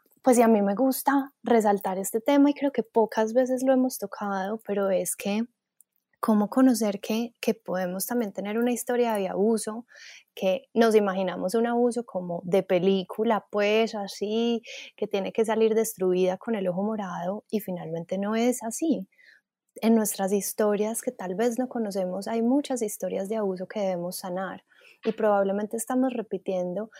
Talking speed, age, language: 165 wpm, 10-29, Spanish